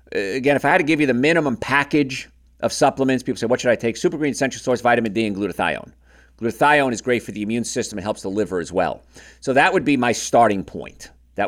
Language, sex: English, male